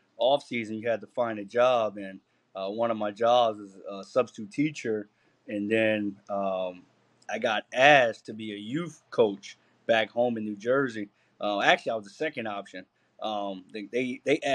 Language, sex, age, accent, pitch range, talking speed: English, male, 20-39, American, 110-130 Hz, 185 wpm